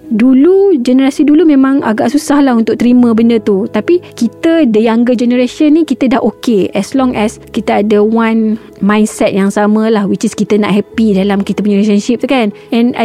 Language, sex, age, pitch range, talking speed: Malay, female, 20-39, 205-255 Hz, 190 wpm